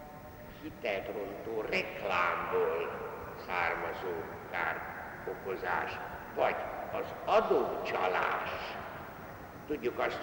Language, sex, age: Hungarian, male, 60-79